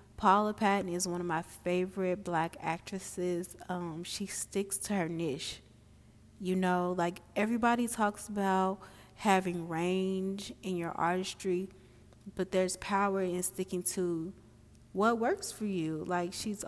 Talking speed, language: 135 wpm, English